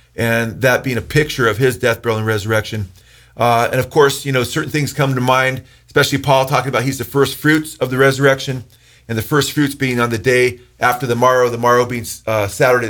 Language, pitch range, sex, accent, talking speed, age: English, 120-140 Hz, male, American, 230 wpm, 40-59